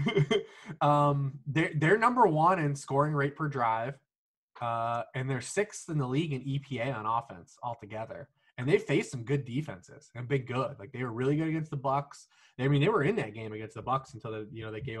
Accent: American